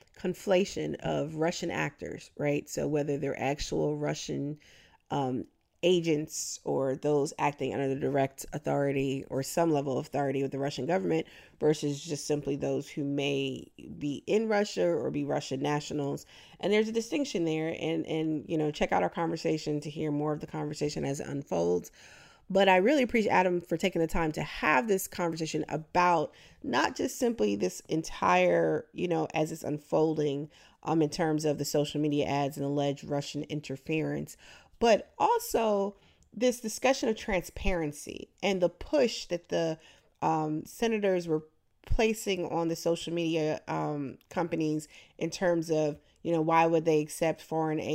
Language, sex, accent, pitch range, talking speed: English, female, American, 145-170 Hz, 165 wpm